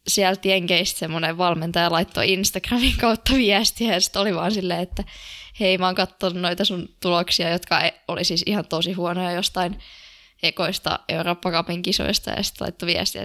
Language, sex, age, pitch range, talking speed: Finnish, female, 20-39, 175-195 Hz, 160 wpm